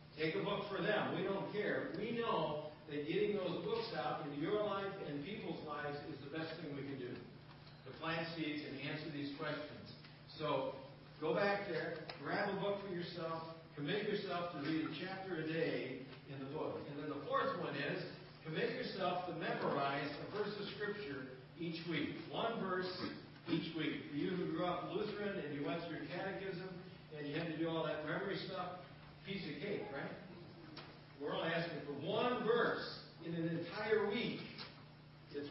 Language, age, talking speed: English, 50-69, 185 wpm